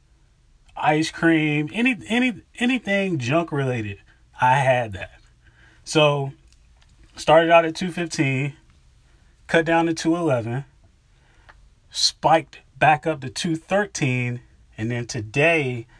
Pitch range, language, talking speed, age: 120-165 Hz, English, 100 wpm, 30-49